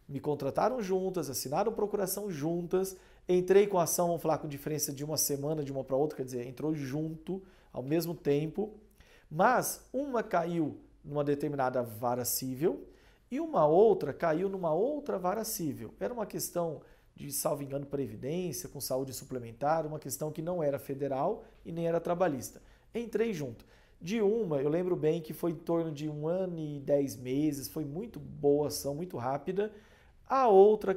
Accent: Brazilian